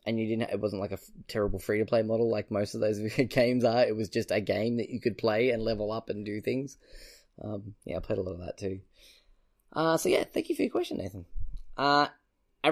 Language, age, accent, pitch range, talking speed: English, 10-29, Australian, 100-130 Hz, 240 wpm